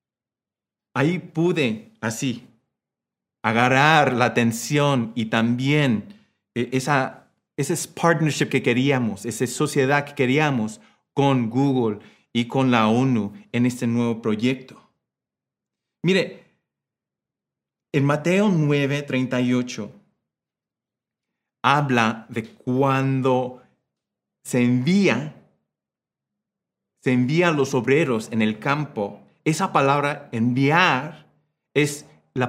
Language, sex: Spanish, male